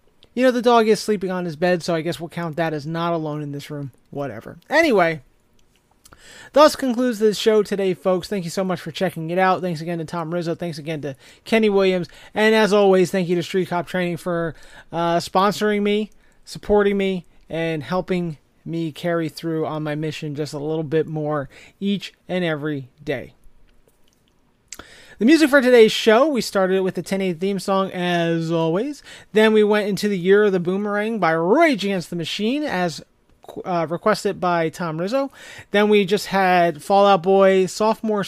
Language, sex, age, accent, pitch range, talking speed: English, male, 30-49, American, 165-205 Hz, 190 wpm